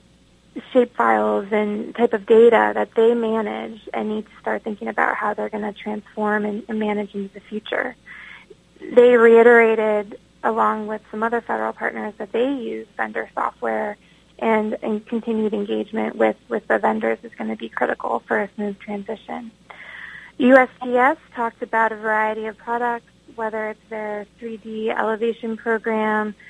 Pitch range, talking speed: 210-230 Hz, 155 wpm